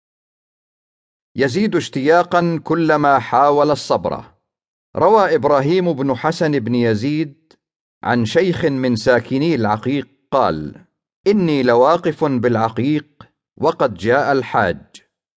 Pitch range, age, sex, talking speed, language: 120-155 Hz, 50-69, male, 90 wpm, English